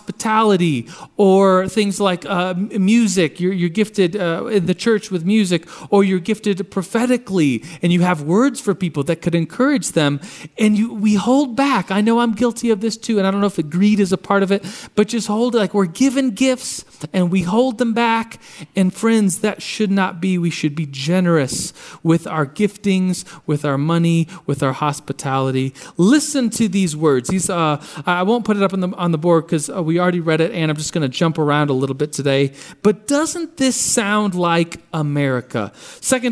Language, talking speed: English, 205 wpm